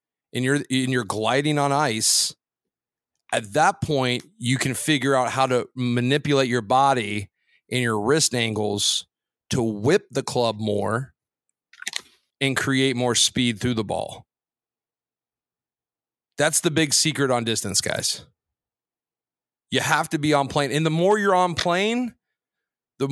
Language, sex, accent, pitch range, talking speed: English, male, American, 115-145 Hz, 140 wpm